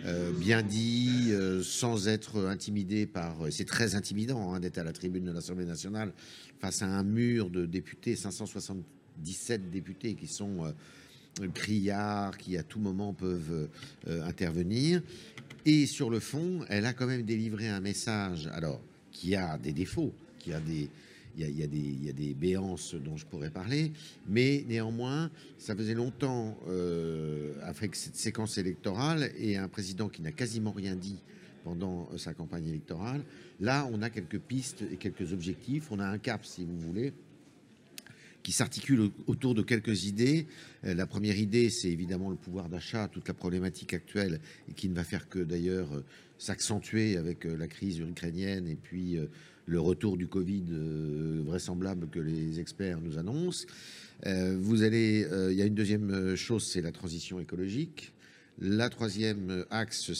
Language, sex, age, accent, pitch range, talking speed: French, male, 50-69, French, 90-110 Hz, 170 wpm